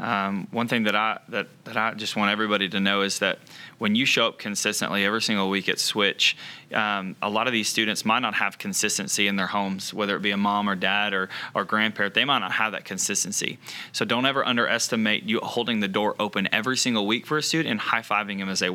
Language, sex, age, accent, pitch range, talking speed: English, male, 20-39, American, 100-120 Hz, 235 wpm